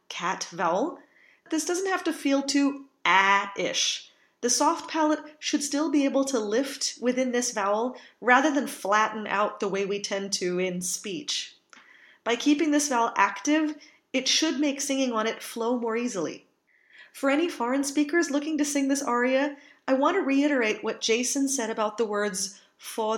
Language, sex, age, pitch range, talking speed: English, female, 30-49, 225-285 Hz, 175 wpm